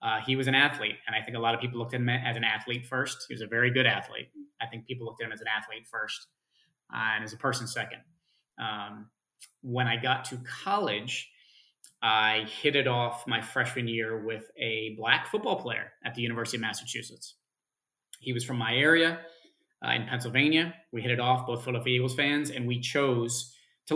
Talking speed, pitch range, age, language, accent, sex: 210 wpm, 115-130 Hz, 30-49, English, American, male